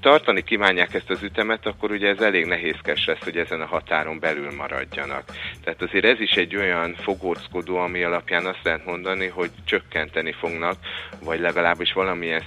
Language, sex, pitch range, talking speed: Hungarian, male, 80-95 Hz, 170 wpm